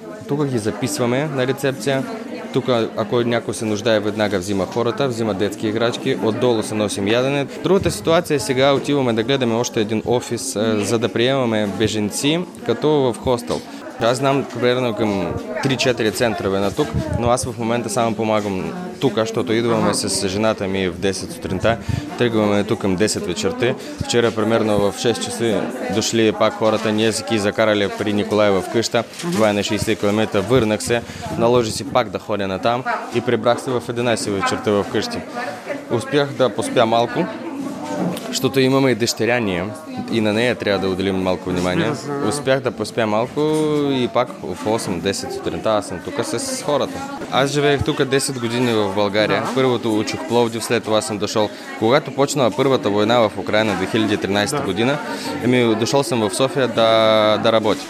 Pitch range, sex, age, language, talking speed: 105-130 Hz, male, 20-39, Bulgarian, 170 wpm